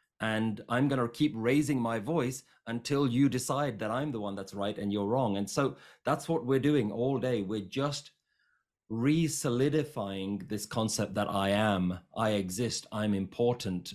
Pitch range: 100-120 Hz